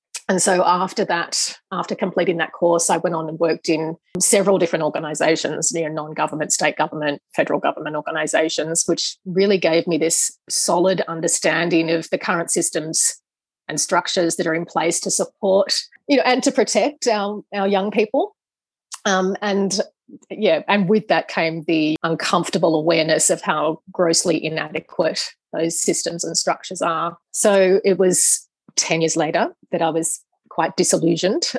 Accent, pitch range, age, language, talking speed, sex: Australian, 165-195 Hz, 30-49, English, 160 wpm, female